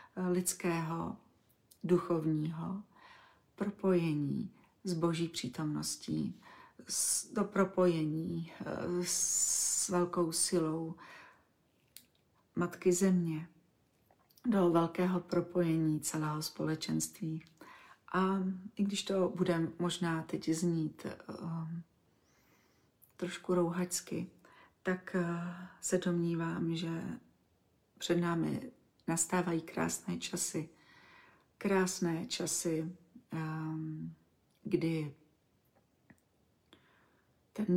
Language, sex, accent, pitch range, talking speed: Czech, female, native, 160-185 Hz, 70 wpm